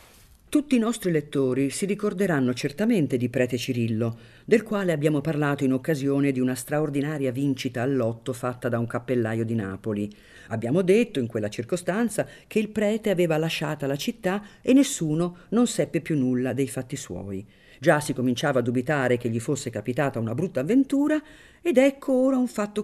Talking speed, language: 175 wpm, Italian